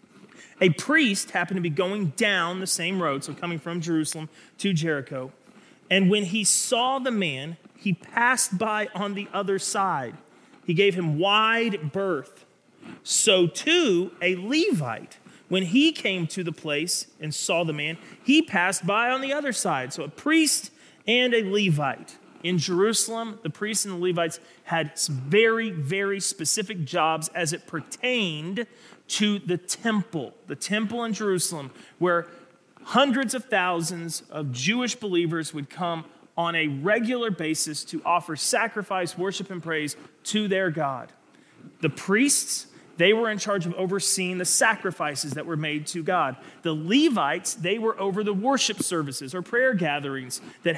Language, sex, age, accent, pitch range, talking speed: English, male, 30-49, American, 165-215 Hz, 155 wpm